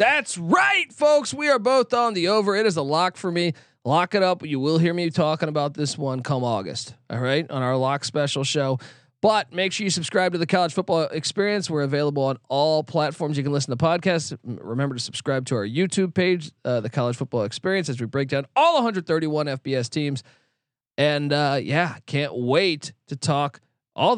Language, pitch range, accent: English, 130-165 Hz, American